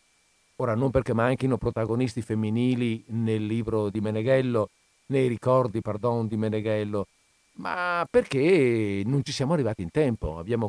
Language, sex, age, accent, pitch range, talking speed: Italian, male, 50-69, native, 105-130 Hz, 135 wpm